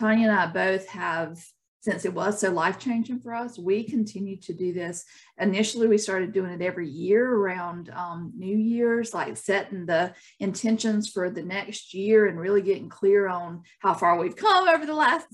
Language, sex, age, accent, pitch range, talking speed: English, female, 50-69, American, 185-225 Hz, 190 wpm